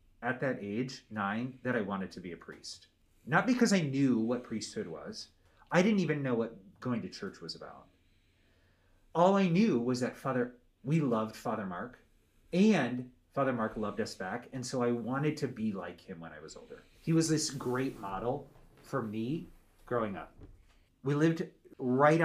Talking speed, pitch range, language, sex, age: 185 wpm, 100-140 Hz, English, male, 30-49